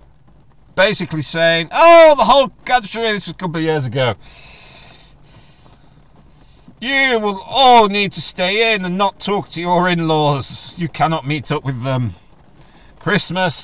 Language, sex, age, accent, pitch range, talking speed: English, male, 50-69, British, 115-175 Hz, 145 wpm